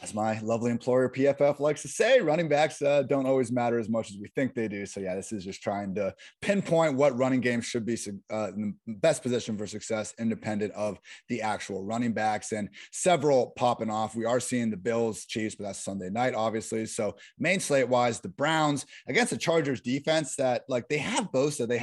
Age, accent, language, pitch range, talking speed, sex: 30-49, American, English, 110-145 Hz, 215 wpm, male